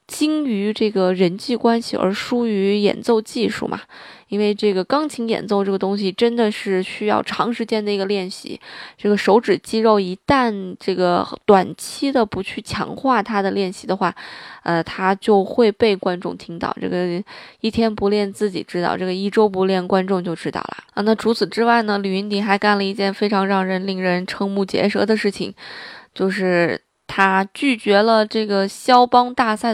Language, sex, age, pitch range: Chinese, female, 20-39, 195-225 Hz